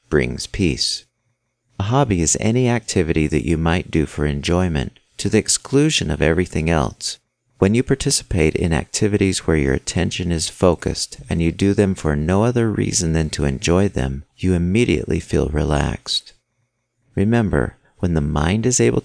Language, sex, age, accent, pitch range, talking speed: English, male, 50-69, American, 80-105 Hz, 160 wpm